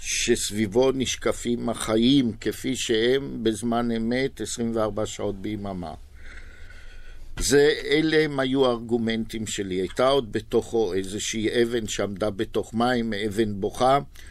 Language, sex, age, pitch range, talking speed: Hebrew, male, 50-69, 90-115 Hz, 105 wpm